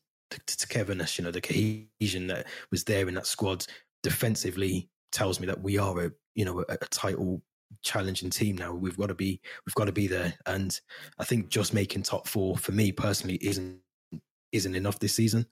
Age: 20-39